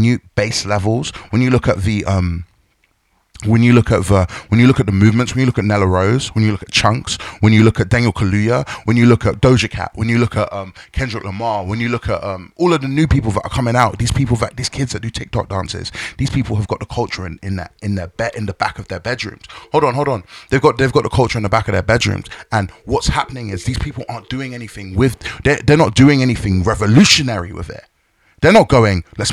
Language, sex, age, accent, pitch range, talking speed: English, male, 20-39, British, 105-125 Hz, 265 wpm